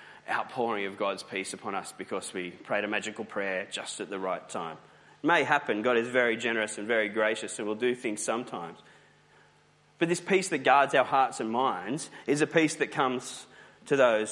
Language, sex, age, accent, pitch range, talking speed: English, male, 30-49, Australian, 110-145 Hz, 200 wpm